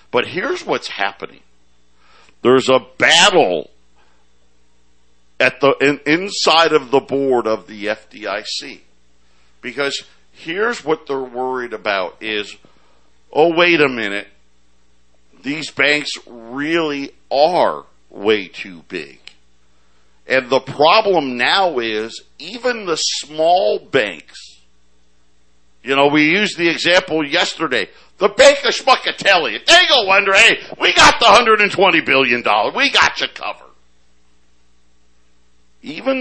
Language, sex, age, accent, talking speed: English, male, 50-69, American, 115 wpm